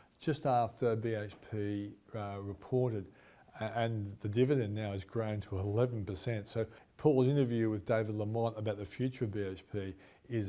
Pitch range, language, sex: 110-145 Hz, English, male